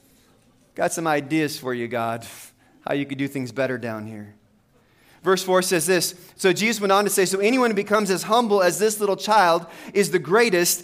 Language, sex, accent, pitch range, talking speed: English, male, American, 150-190 Hz, 205 wpm